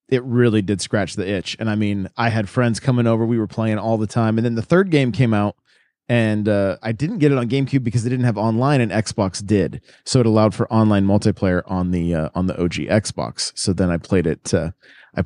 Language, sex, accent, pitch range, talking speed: English, male, American, 95-120 Hz, 250 wpm